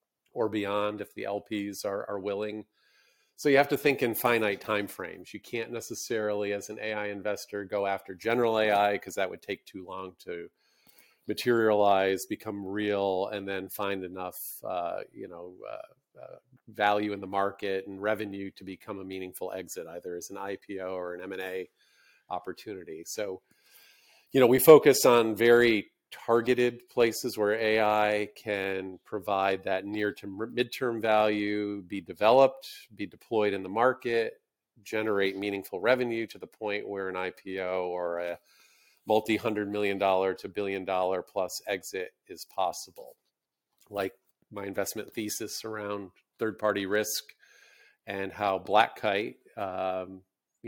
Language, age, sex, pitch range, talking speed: English, 40-59, male, 95-110 Hz, 145 wpm